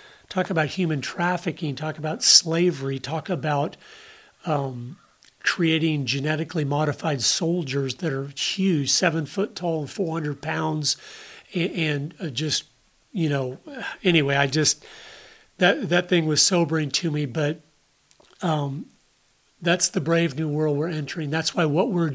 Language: English